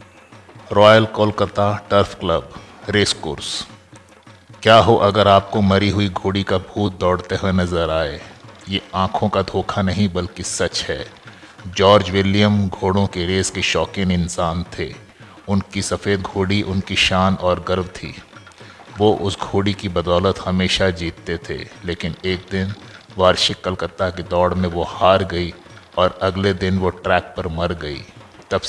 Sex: male